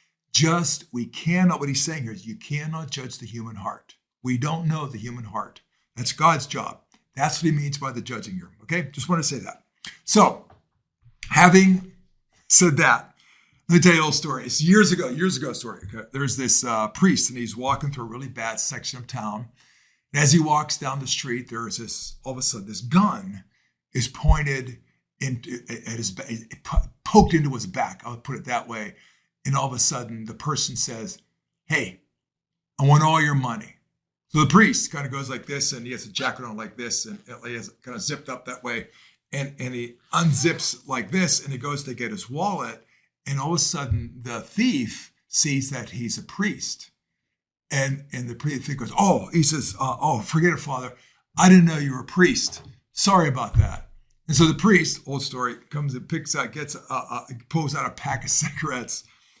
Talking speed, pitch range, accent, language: 205 wpm, 120-160 Hz, American, English